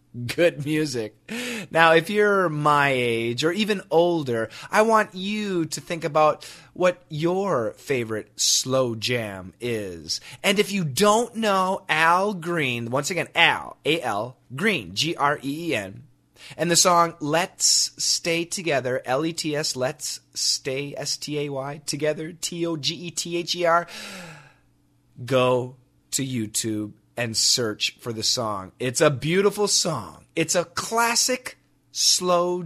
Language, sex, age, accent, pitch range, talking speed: English, male, 30-49, American, 125-185 Hz, 115 wpm